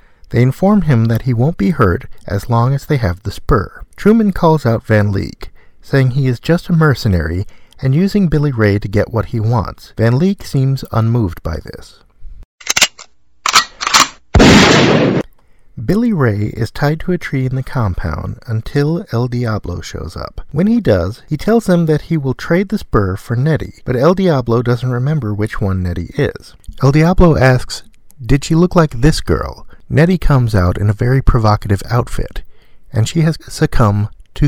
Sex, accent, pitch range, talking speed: male, American, 105-150 Hz, 175 wpm